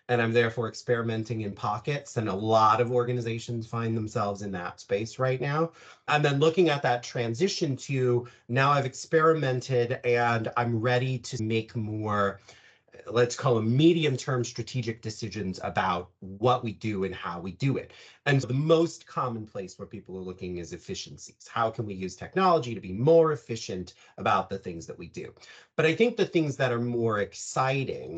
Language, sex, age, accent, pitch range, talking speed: English, male, 30-49, American, 105-130 Hz, 180 wpm